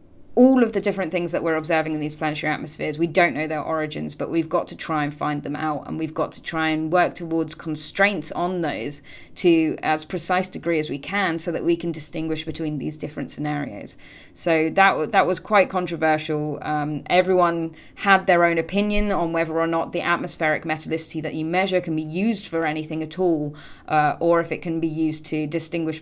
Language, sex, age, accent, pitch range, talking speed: English, female, 20-39, British, 155-175 Hz, 210 wpm